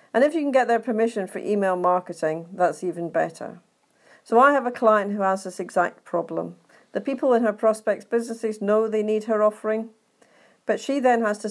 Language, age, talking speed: English, 50-69, 205 wpm